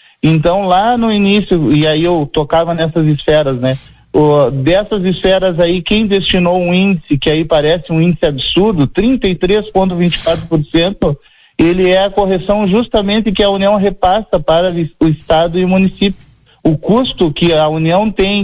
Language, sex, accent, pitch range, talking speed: Portuguese, male, Brazilian, 155-185 Hz, 155 wpm